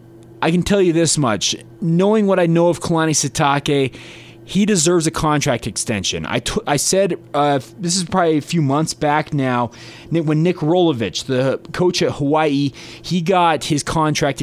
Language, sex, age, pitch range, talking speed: English, male, 30-49, 130-160 Hz, 170 wpm